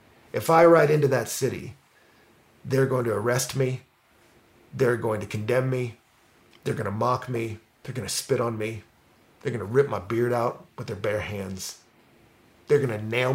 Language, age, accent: English, 40-59, American